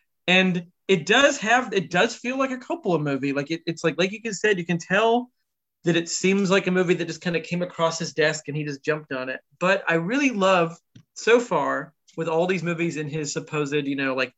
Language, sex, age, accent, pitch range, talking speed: English, male, 30-49, American, 140-175 Hz, 245 wpm